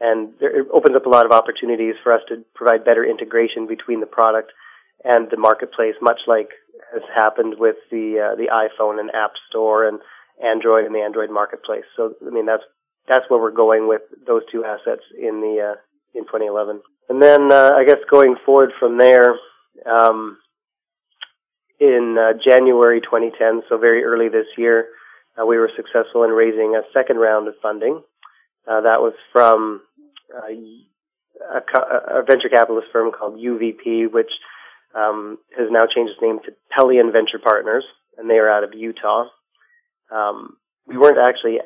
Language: English